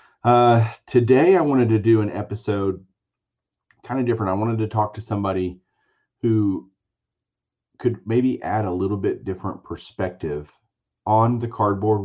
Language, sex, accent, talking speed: English, male, American, 145 wpm